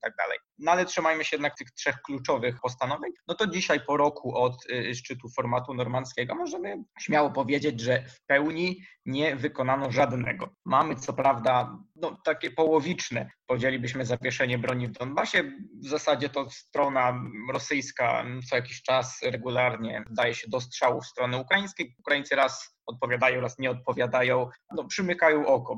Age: 20-39